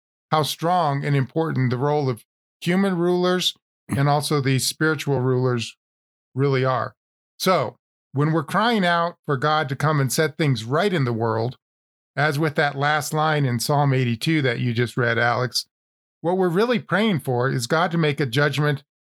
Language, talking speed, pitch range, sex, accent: English, 175 wpm, 125-155 Hz, male, American